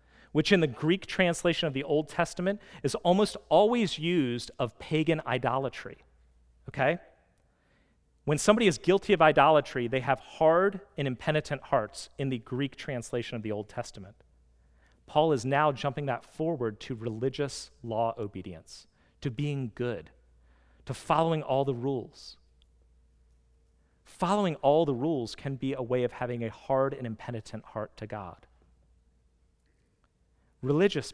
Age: 40-59